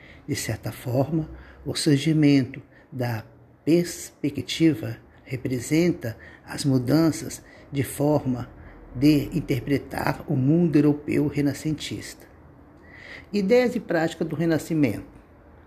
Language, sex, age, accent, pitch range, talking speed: Portuguese, male, 50-69, Brazilian, 135-180 Hz, 90 wpm